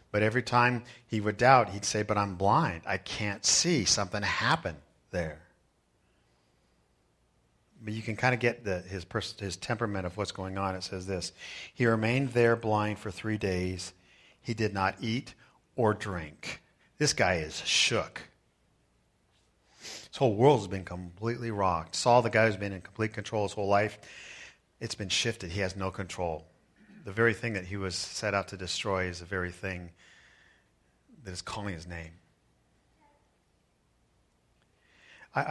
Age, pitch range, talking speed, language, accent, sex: 40-59, 90-110 Hz, 165 wpm, English, American, male